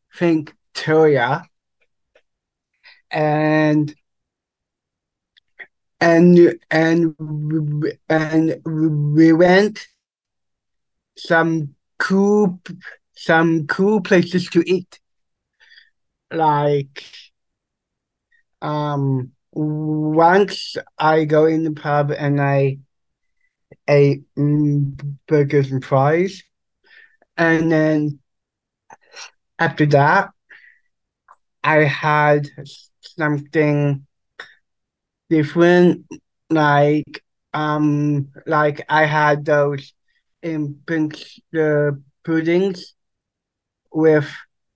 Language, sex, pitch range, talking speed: English, male, 145-175 Hz, 60 wpm